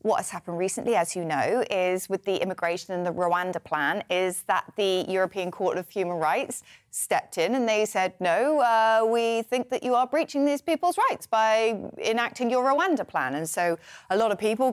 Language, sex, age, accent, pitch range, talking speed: English, female, 30-49, British, 175-225 Hz, 205 wpm